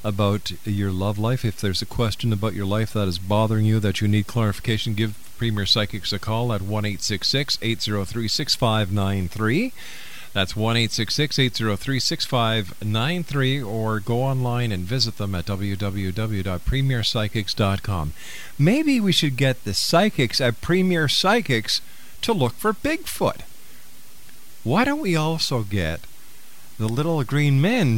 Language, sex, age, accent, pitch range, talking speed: English, male, 50-69, American, 100-130 Hz, 135 wpm